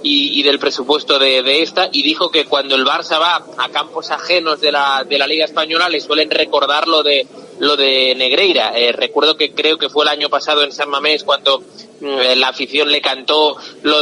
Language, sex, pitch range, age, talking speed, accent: Spanish, male, 145-180 Hz, 30-49, 215 wpm, Spanish